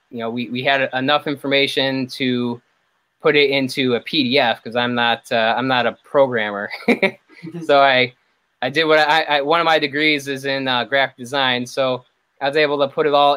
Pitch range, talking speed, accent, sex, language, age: 120-135 Hz, 205 wpm, American, male, English, 20-39